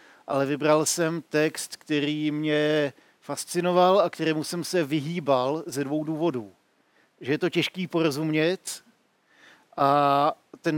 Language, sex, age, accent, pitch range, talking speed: Czech, male, 50-69, native, 145-165 Hz, 120 wpm